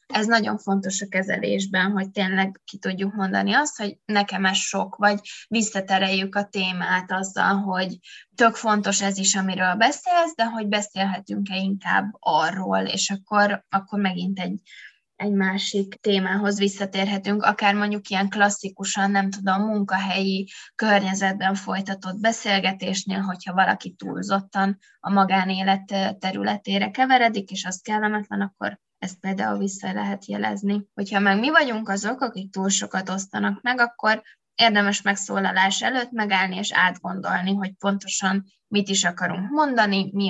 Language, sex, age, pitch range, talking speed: Hungarian, female, 20-39, 190-210 Hz, 135 wpm